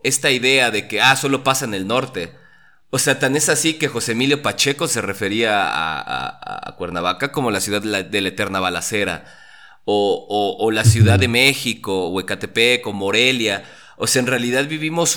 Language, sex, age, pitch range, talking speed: Spanish, male, 30-49, 120-160 Hz, 200 wpm